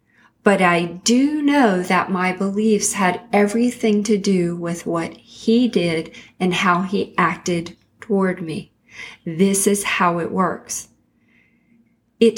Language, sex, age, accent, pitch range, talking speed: English, female, 40-59, American, 185-230 Hz, 130 wpm